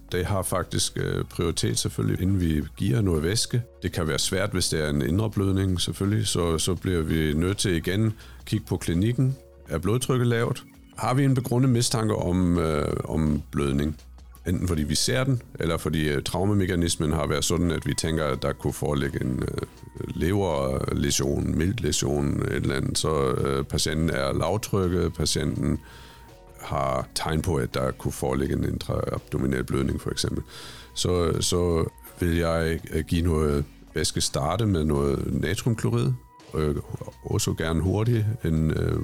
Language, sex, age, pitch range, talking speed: Danish, male, 50-69, 75-100 Hz, 155 wpm